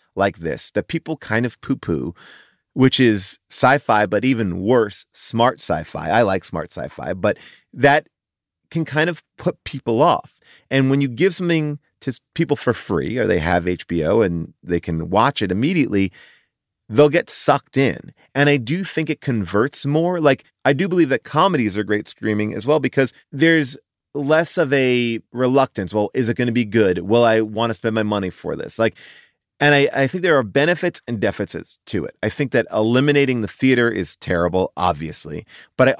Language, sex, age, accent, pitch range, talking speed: English, male, 30-49, American, 110-160 Hz, 190 wpm